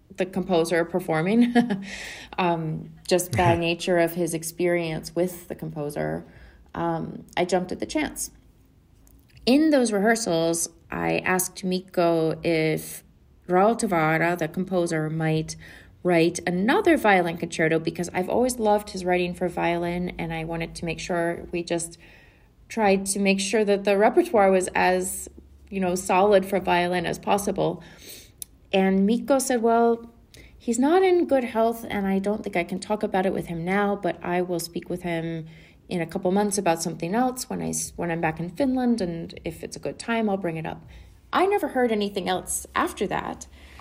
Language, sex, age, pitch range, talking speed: English, female, 30-49, 165-205 Hz, 170 wpm